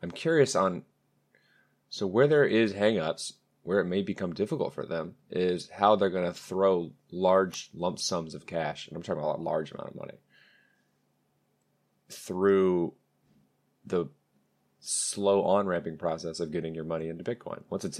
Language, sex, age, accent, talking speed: English, male, 30-49, American, 160 wpm